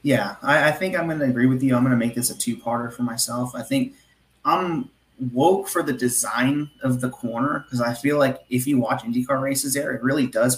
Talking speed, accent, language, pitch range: 240 wpm, American, English, 120-145 Hz